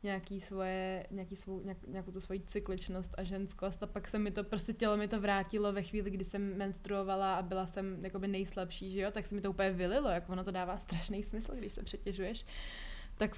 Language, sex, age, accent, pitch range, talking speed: Czech, female, 20-39, native, 185-210 Hz, 215 wpm